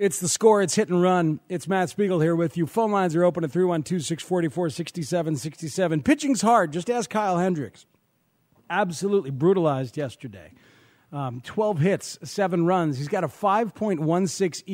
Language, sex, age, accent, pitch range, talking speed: English, male, 40-59, American, 150-185 Hz, 150 wpm